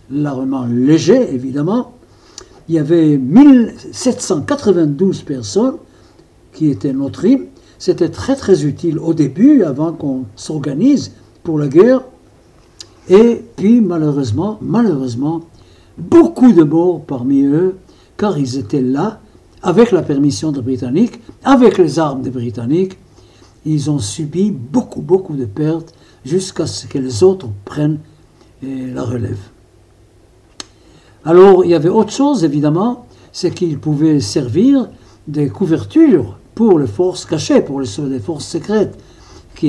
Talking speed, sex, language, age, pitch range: 125 wpm, male, French, 60-79, 135-185 Hz